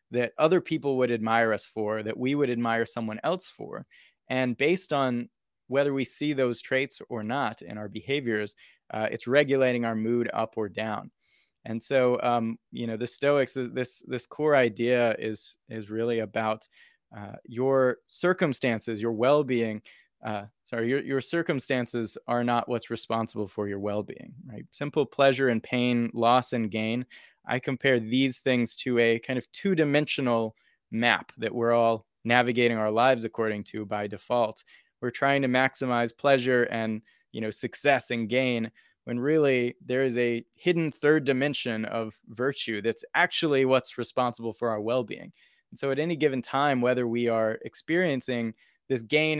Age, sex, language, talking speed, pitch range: 20-39, male, English, 165 wpm, 115-135 Hz